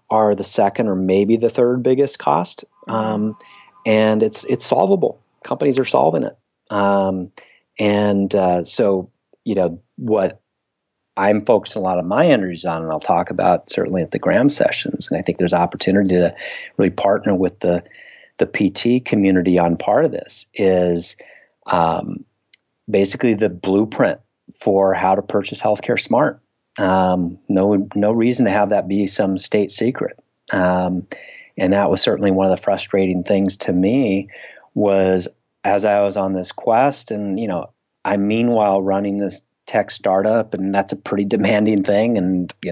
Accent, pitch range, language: American, 95-110 Hz, English